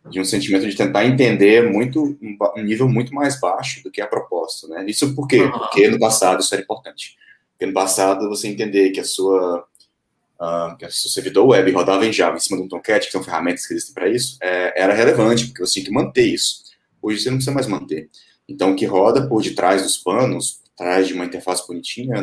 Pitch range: 95-130 Hz